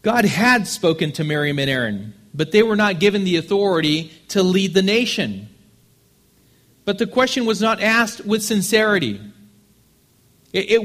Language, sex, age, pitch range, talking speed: English, male, 40-59, 135-195 Hz, 150 wpm